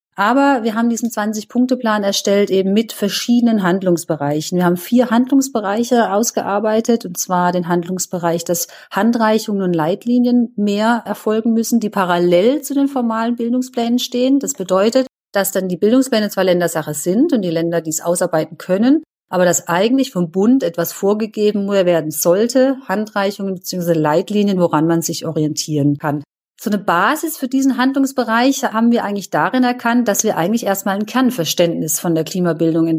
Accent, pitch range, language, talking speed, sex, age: German, 175-240 Hz, German, 155 wpm, female, 30-49